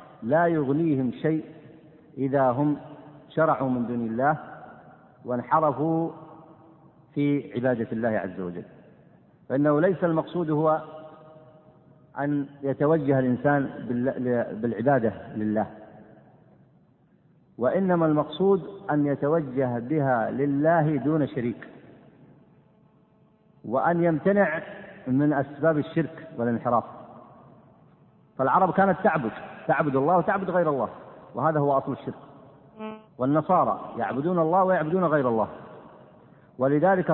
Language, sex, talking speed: Arabic, male, 90 wpm